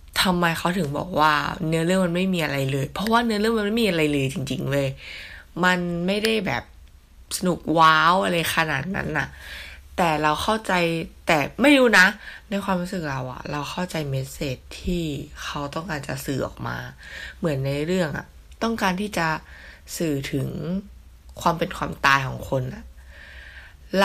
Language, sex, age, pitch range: Thai, female, 20-39, 125-180 Hz